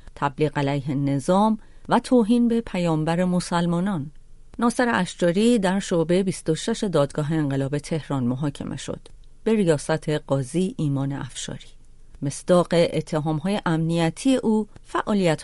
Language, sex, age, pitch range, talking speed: Persian, female, 40-59, 150-210 Hz, 115 wpm